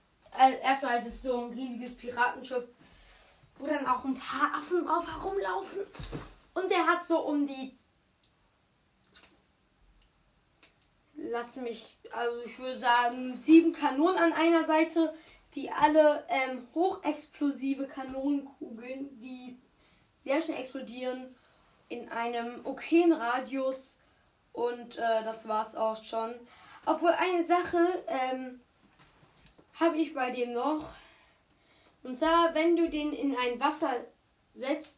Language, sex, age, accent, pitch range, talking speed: German, female, 10-29, German, 240-315 Hz, 120 wpm